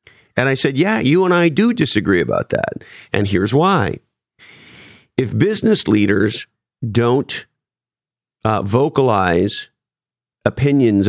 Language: English